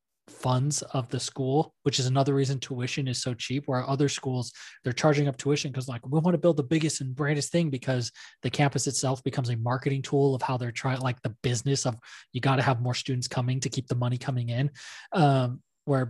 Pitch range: 120-140 Hz